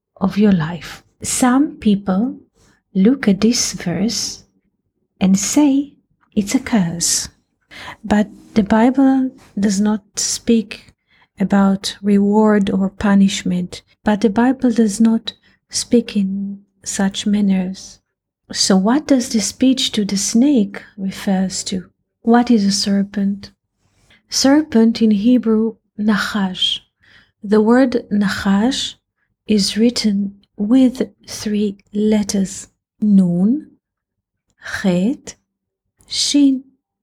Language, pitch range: English, 195-235 Hz